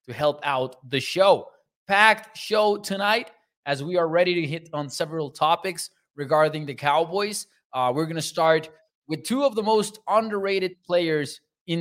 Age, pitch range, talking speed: 20-39, 135-180 Hz, 170 wpm